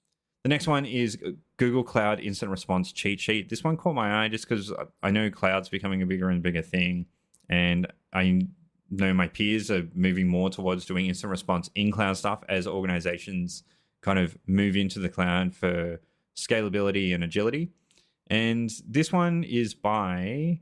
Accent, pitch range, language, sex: Australian, 90-120 Hz, English, male